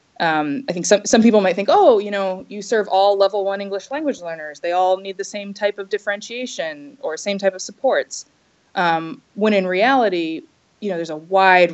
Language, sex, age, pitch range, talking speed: English, female, 20-39, 170-200 Hz, 210 wpm